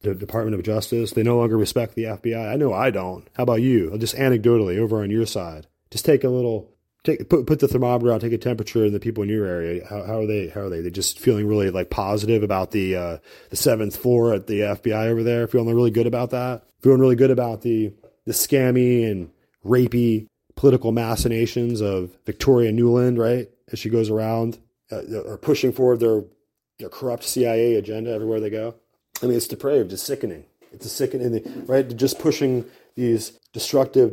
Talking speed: 205 wpm